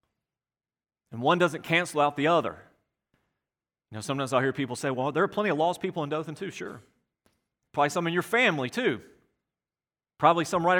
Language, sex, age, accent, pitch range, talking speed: English, male, 40-59, American, 120-175 Hz, 190 wpm